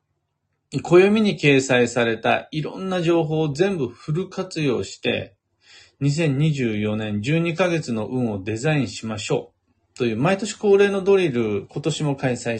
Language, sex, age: Japanese, male, 40-59